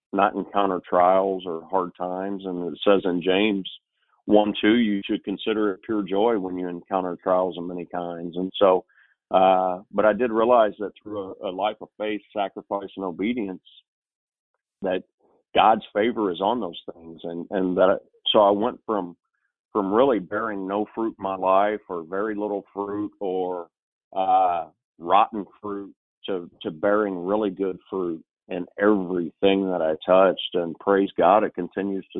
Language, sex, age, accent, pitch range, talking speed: English, male, 40-59, American, 90-105 Hz, 170 wpm